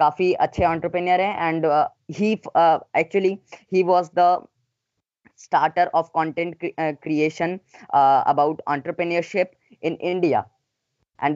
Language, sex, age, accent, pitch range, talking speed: Hindi, female, 20-39, native, 150-175 Hz, 100 wpm